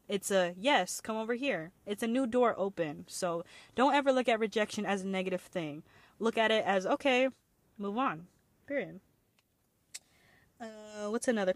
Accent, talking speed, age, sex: American, 165 wpm, 20-39, female